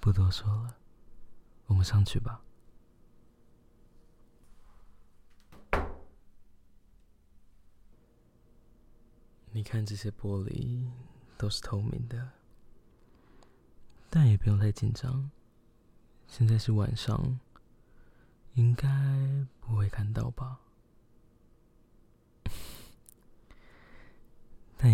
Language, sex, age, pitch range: Chinese, male, 20-39, 105-120 Hz